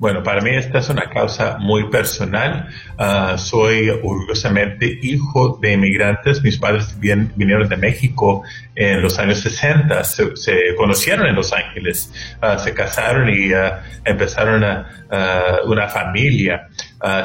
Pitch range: 100-125 Hz